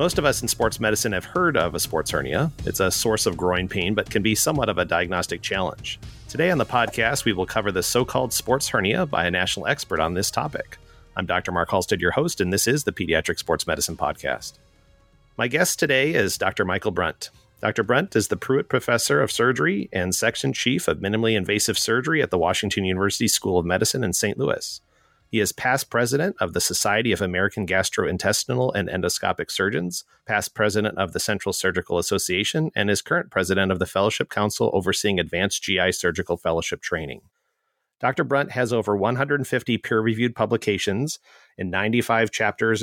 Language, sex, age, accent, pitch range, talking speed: English, male, 40-59, American, 95-115 Hz, 190 wpm